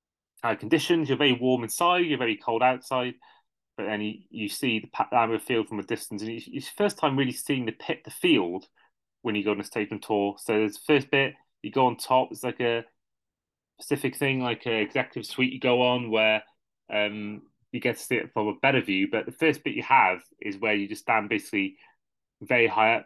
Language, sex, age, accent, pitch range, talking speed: English, male, 20-39, British, 105-130 Hz, 225 wpm